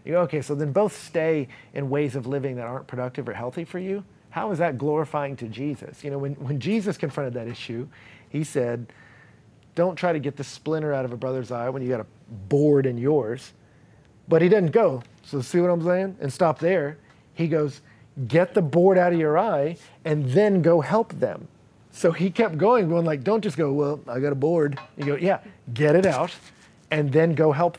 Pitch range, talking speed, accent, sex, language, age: 125-160 Hz, 220 wpm, American, male, English, 40-59